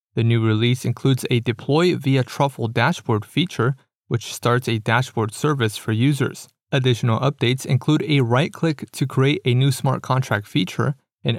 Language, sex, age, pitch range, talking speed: English, male, 30-49, 120-145 Hz, 160 wpm